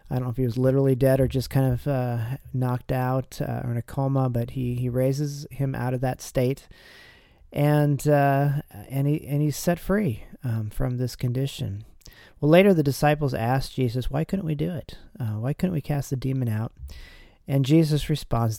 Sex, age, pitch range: male, 40-59, 115-140 Hz